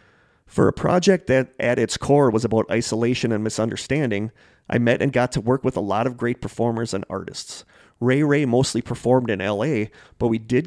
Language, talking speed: English, 195 wpm